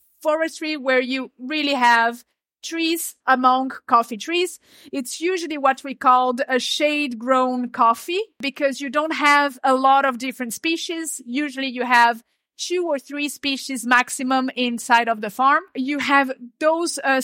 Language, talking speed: English, 145 wpm